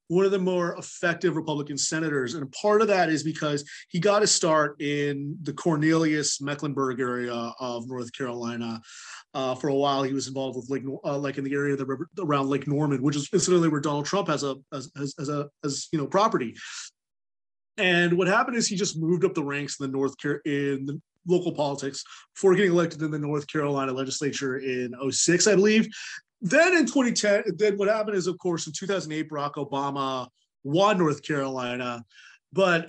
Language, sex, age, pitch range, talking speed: English, male, 30-49, 135-185 Hz, 195 wpm